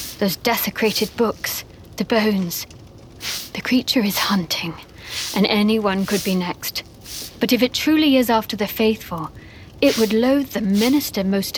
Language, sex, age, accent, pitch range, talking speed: English, female, 40-59, British, 195-235 Hz, 145 wpm